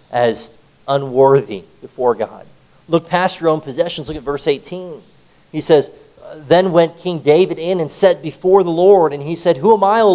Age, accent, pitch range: 40-59, American, 140-185 Hz